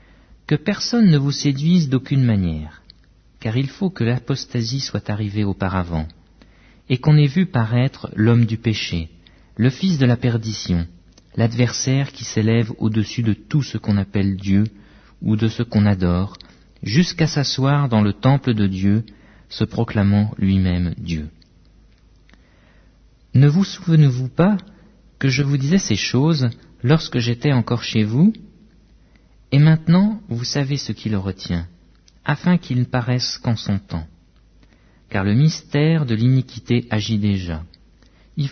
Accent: French